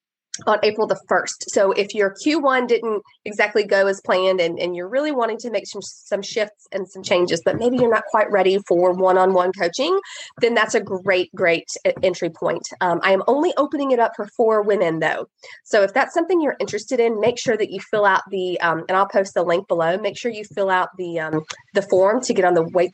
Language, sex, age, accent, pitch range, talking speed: English, female, 30-49, American, 180-235 Hz, 230 wpm